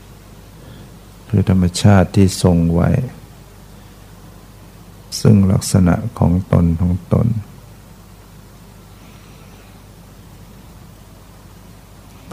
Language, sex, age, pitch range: Thai, male, 60-79, 95-105 Hz